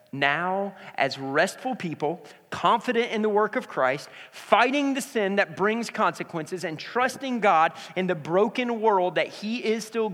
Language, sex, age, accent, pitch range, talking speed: English, male, 40-59, American, 130-185 Hz, 160 wpm